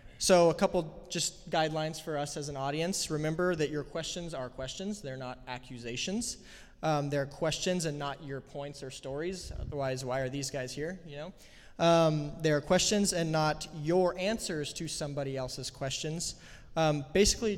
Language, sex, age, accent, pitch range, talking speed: English, male, 20-39, American, 140-170 Hz, 165 wpm